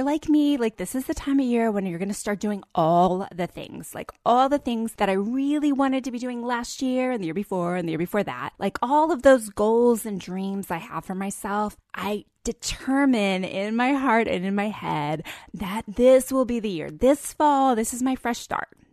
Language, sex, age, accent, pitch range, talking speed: English, female, 20-39, American, 190-255 Hz, 230 wpm